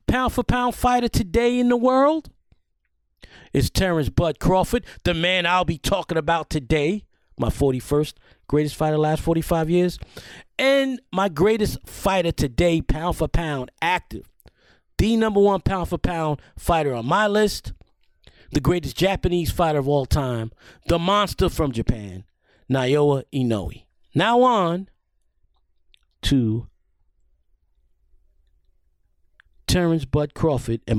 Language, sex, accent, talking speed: English, male, American, 120 wpm